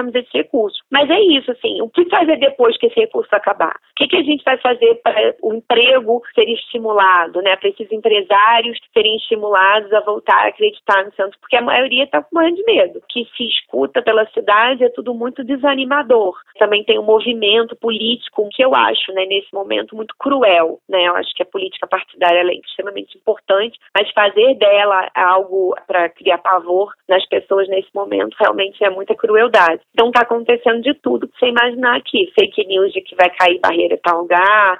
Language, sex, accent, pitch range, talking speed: Portuguese, female, Brazilian, 185-265 Hz, 195 wpm